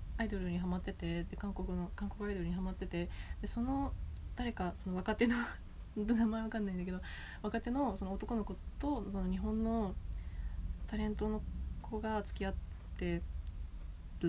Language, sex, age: Japanese, female, 20-39